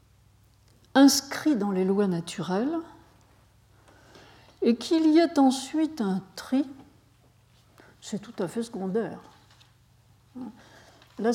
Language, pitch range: French, 195-270 Hz